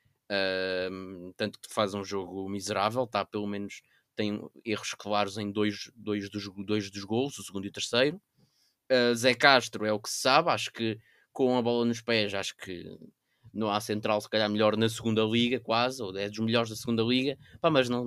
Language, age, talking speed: Portuguese, 20-39, 205 wpm